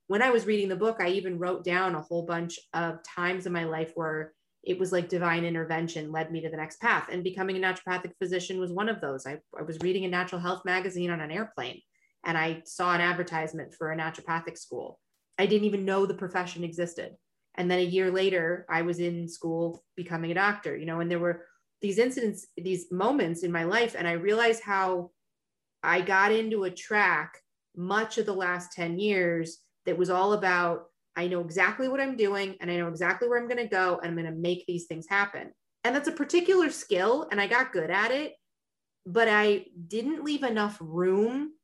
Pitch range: 170-210 Hz